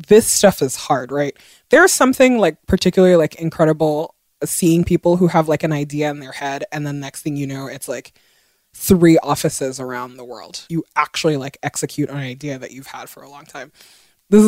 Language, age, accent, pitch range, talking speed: English, 20-39, American, 150-185 Hz, 205 wpm